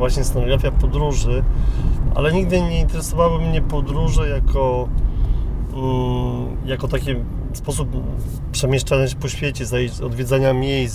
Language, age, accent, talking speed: Polish, 30-49, native, 110 wpm